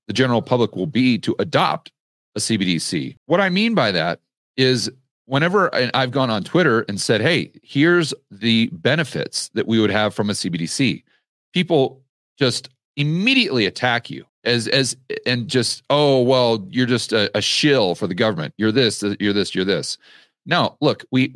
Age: 40-59